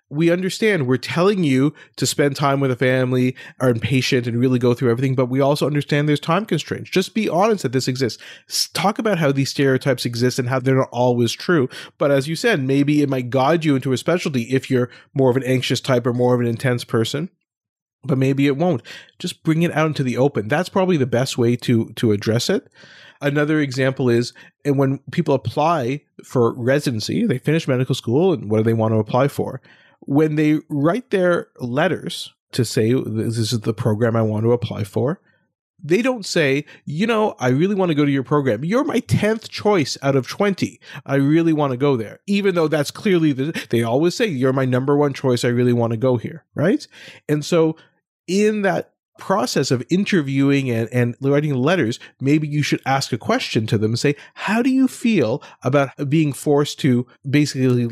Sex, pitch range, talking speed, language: male, 125-160 Hz, 205 wpm, English